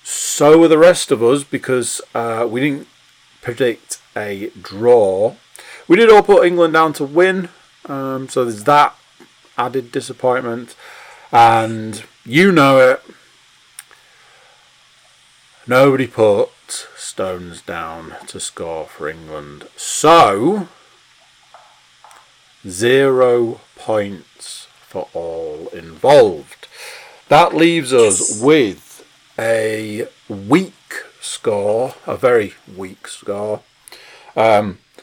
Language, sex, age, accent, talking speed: English, male, 40-59, British, 100 wpm